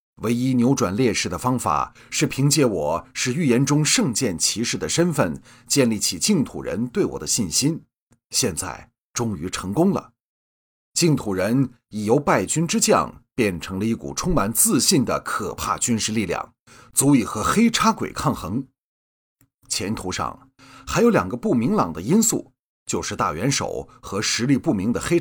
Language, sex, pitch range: Chinese, male, 100-135 Hz